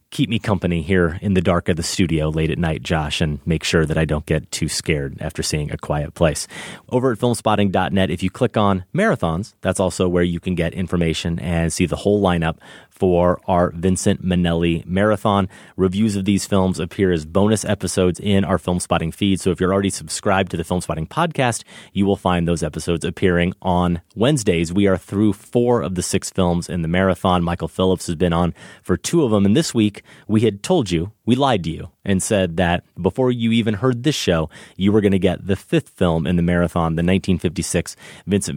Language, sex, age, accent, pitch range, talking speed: English, male, 30-49, American, 85-100 Hz, 215 wpm